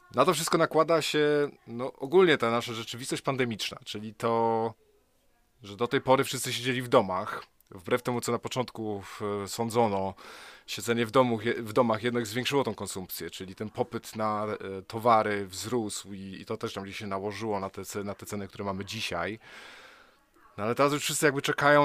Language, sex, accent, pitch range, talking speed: Polish, male, native, 110-130 Hz, 175 wpm